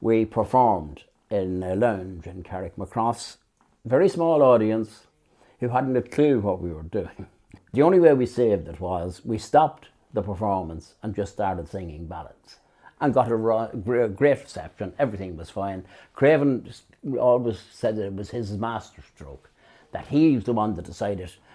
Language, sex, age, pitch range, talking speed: English, male, 60-79, 100-125 Hz, 165 wpm